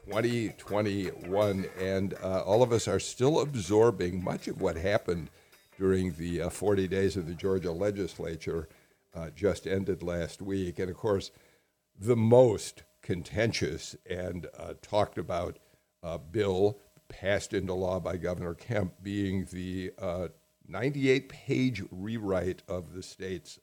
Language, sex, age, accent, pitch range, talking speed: English, male, 50-69, American, 90-115 Hz, 130 wpm